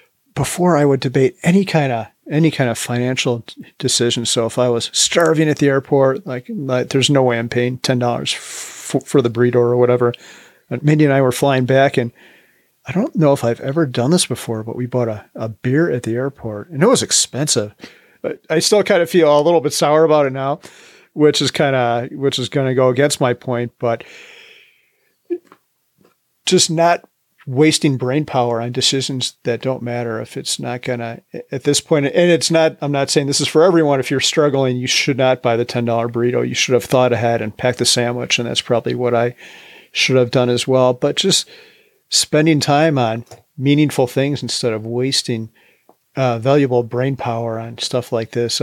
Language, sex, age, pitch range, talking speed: English, male, 40-59, 120-150 Hz, 205 wpm